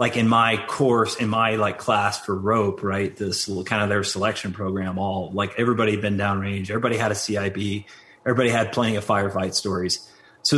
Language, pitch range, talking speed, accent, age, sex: English, 100-125 Hz, 195 wpm, American, 30-49, male